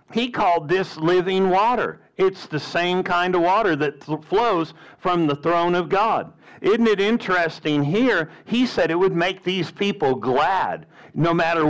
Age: 50-69